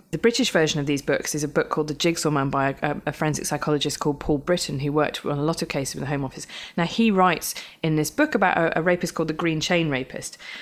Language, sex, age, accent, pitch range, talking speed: English, female, 20-39, British, 150-175 Hz, 265 wpm